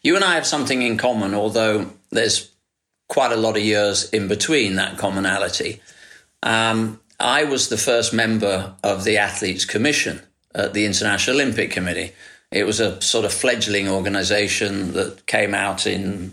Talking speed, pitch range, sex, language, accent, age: 160 wpm, 95-110 Hz, male, English, British, 40-59